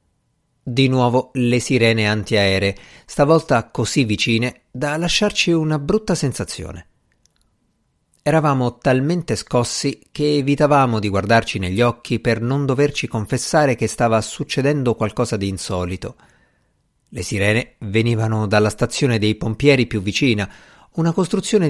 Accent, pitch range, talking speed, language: native, 105-145 Hz, 120 wpm, Italian